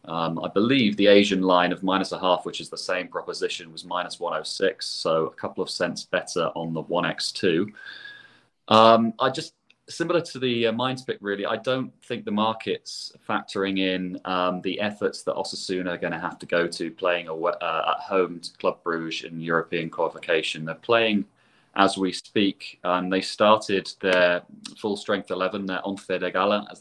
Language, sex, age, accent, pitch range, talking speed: English, male, 30-49, British, 90-115 Hz, 190 wpm